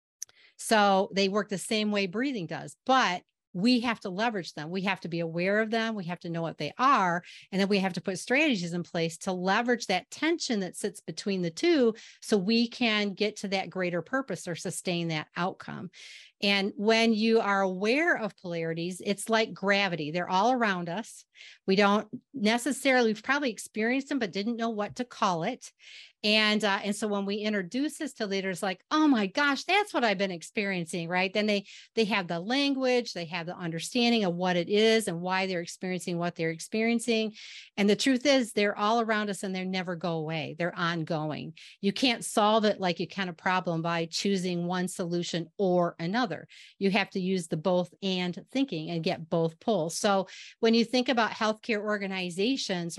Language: English